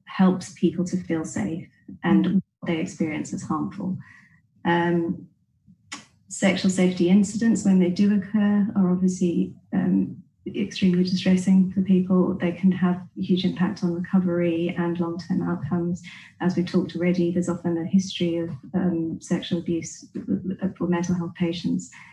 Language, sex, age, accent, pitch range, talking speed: English, female, 30-49, British, 170-190 Hz, 145 wpm